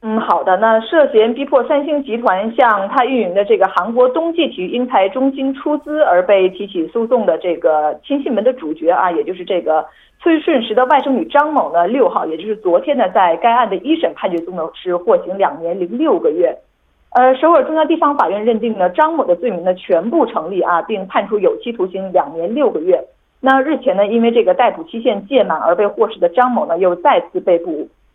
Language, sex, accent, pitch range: Korean, female, Chinese, 190-290 Hz